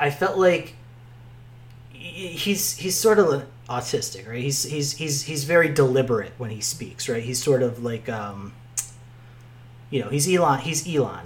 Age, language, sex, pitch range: 30-49, English, male, 120-135 Hz